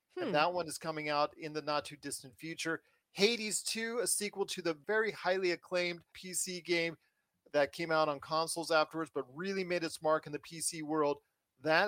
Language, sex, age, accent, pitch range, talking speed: English, male, 40-59, American, 160-205 Hz, 180 wpm